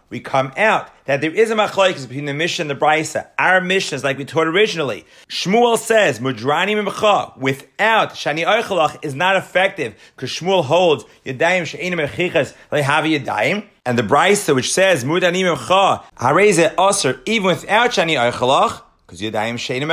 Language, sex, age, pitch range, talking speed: English, male, 30-49, 135-190 Hz, 150 wpm